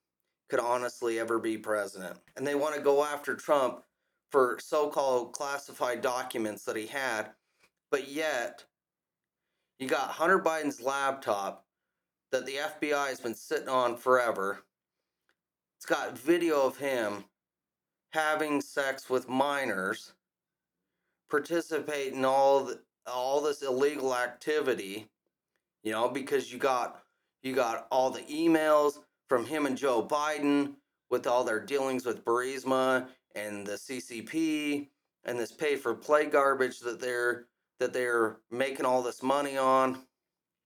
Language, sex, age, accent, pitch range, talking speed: English, male, 30-49, American, 120-150 Hz, 130 wpm